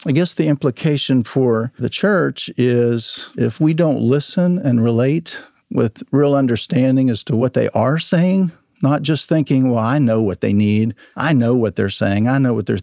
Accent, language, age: American, English, 50-69